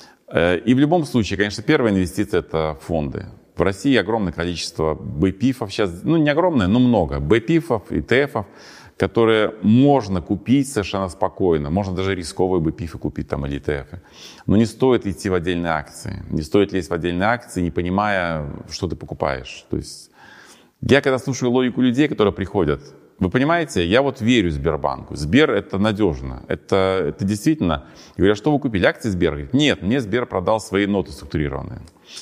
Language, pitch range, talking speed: Russian, 90-120 Hz, 165 wpm